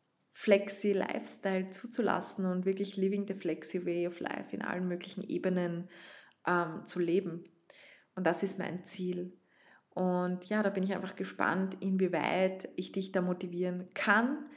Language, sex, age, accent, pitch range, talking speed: German, female, 20-39, Austrian, 180-205 Hz, 145 wpm